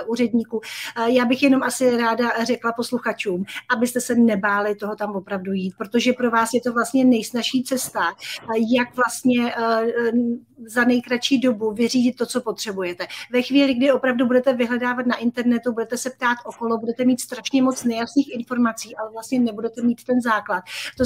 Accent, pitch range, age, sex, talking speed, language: native, 225-250 Hz, 40-59, female, 160 wpm, Czech